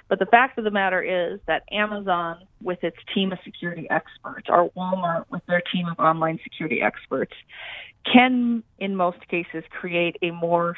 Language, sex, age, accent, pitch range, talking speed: English, female, 30-49, American, 165-195 Hz, 175 wpm